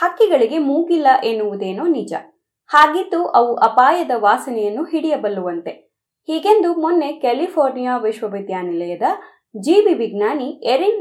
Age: 20-39